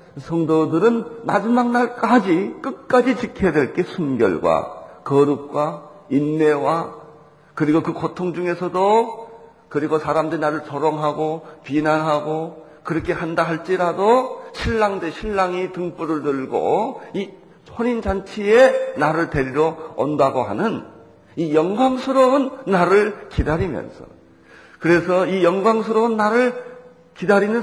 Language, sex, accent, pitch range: Korean, male, native, 155-225 Hz